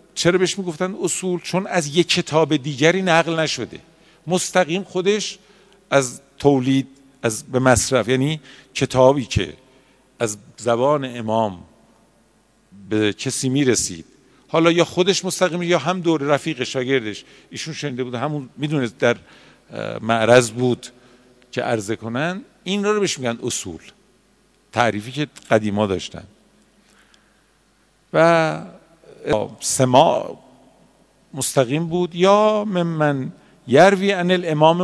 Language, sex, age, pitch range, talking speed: Persian, male, 50-69, 120-180 Hz, 115 wpm